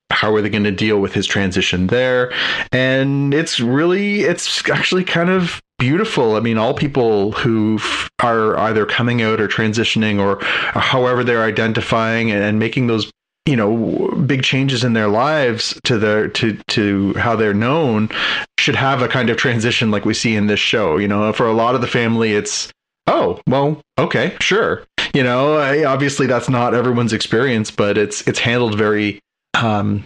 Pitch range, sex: 105-130 Hz, male